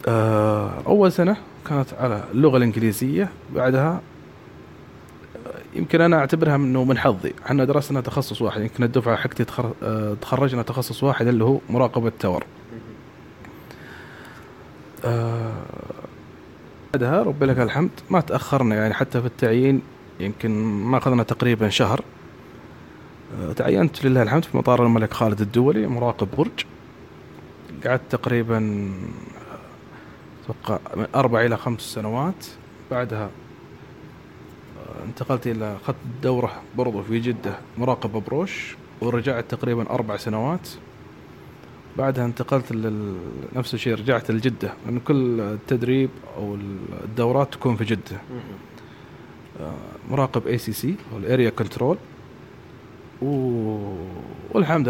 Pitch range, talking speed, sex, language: 110-135 Hz, 100 wpm, male, Persian